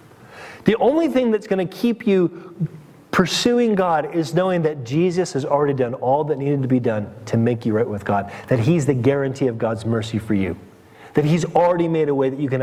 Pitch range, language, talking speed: 130-170 Hz, English, 220 wpm